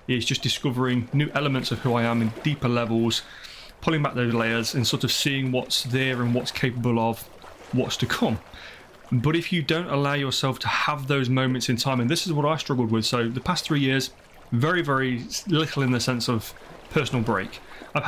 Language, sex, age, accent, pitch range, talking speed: English, male, 30-49, British, 120-150 Hz, 210 wpm